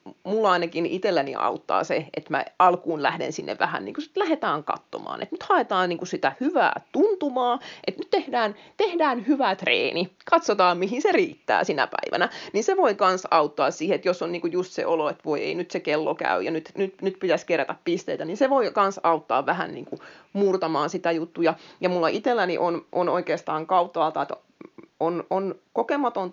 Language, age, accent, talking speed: Finnish, 30-49, native, 190 wpm